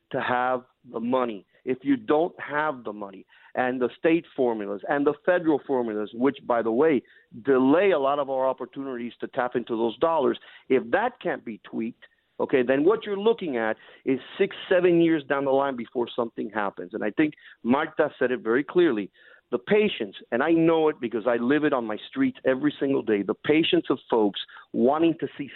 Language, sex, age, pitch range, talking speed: English, male, 40-59, 125-165 Hz, 200 wpm